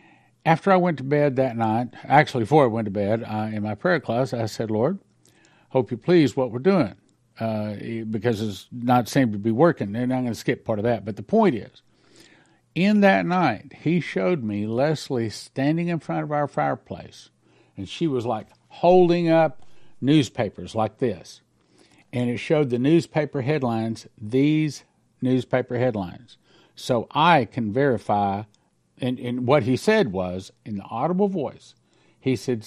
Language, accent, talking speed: English, American, 175 wpm